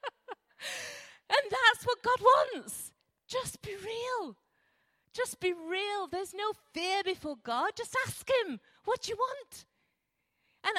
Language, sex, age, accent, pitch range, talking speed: English, female, 40-59, British, 210-345 Hz, 130 wpm